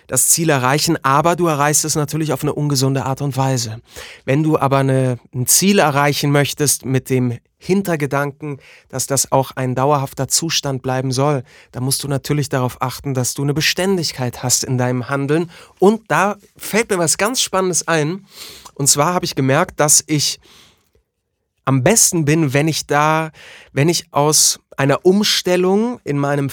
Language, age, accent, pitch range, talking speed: German, 30-49, German, 135-170 Hz, 170 wpm